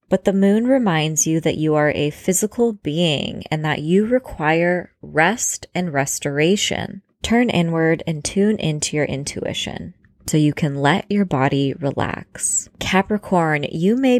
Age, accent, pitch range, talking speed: 20-39, American, 150-195 Hz, 150 wpm